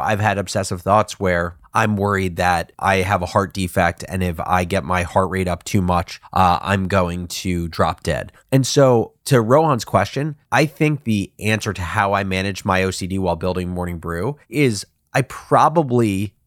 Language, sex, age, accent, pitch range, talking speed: English, male, 30-49, American, 95-115 Hz, 185 wpm